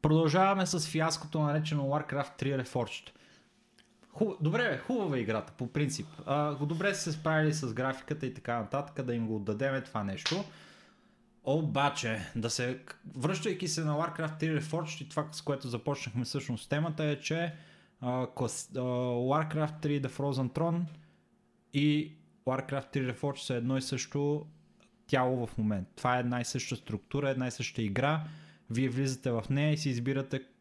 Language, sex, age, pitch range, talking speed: Bulgarian, male, 20-39, 125-150 Hz, 165 wpm